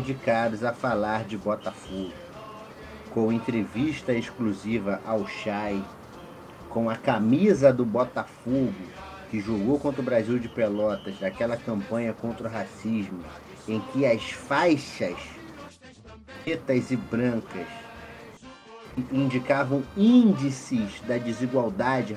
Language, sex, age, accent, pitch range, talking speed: Portuguese, male, 40-59, Brazilian, 100-125 Hz, 105 wpm